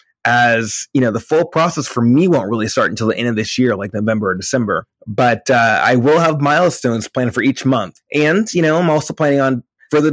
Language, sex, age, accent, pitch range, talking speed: English, male, 20-39, American, 115-145 Hz, 230 wpm